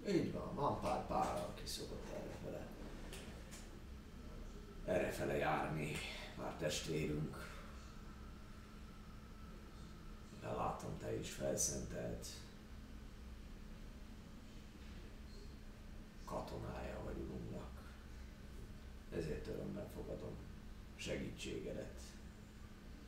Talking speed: 55 wpm